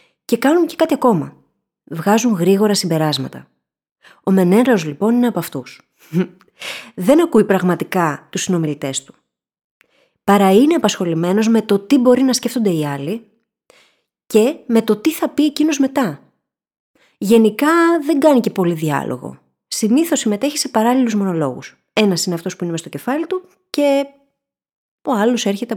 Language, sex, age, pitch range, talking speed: Greek, female, 20-39, 175-260 Hz, 145 wpm